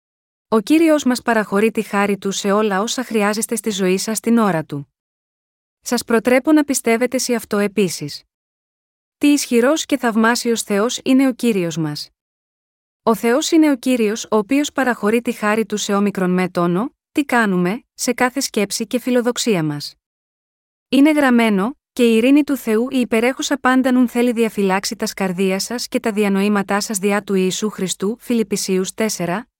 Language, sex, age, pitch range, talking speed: Greek, female, 20-39, 200-250 Hz, 160 wpm